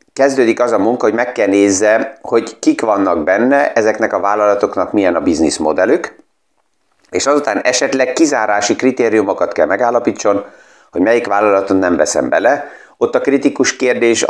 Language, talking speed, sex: Hungarian, 145 wpm, male